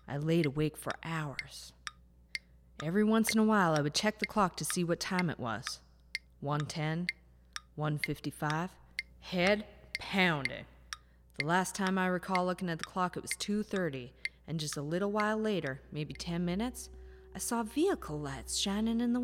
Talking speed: 170 wpm